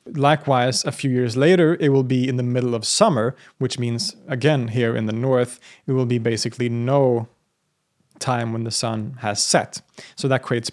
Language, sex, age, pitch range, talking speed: English, male, 30-49, 115-135 Hz, 190 wpm